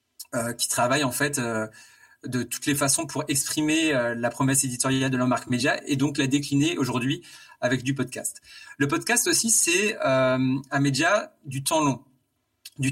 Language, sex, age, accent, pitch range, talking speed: French, male, 30-49, French, 130-160 Hz, 175 wpm